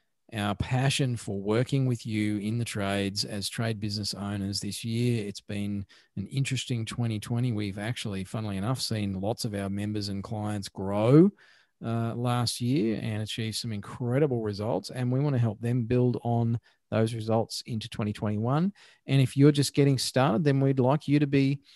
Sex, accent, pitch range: male, Australian, 115-145 Hz